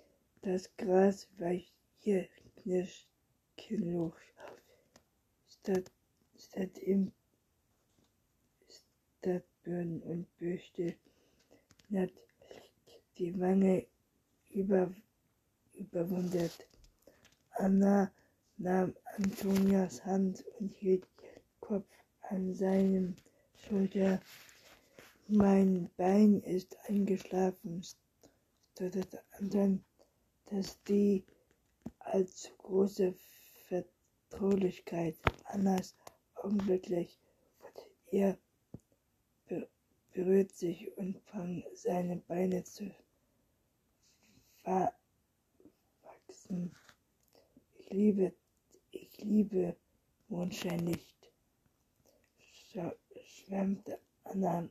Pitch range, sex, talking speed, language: 180-200 Hz, female, 65 wpm, German